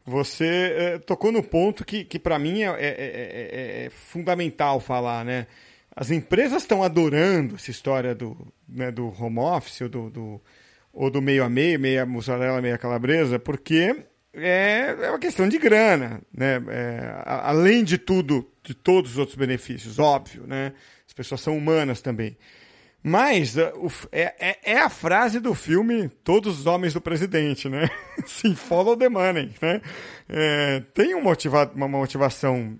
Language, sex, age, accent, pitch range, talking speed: Portuguese, male, 40-59, Brazilian, 130-195 Hz, 150 wpm